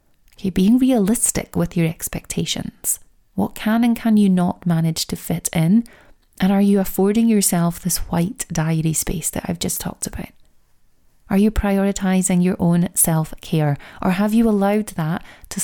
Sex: female